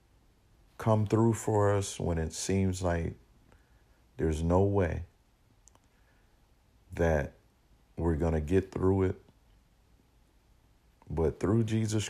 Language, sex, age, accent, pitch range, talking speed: English, male, 50-69, American, 85-100 Hz, 105 wpm